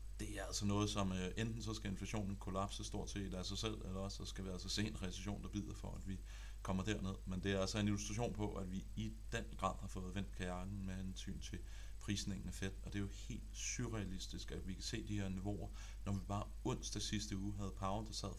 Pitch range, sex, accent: 95-105 Hz, male, native